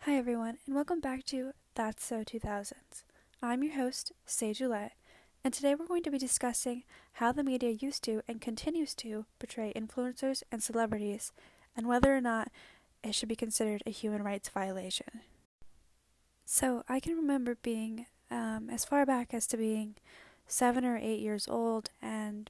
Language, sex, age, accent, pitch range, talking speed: English, female, 10-29, American, 210-250 Hz, 170 wpm